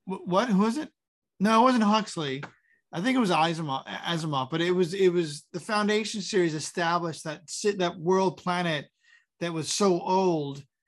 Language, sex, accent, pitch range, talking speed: English, male, American, 150-200 Hz, 165 wpm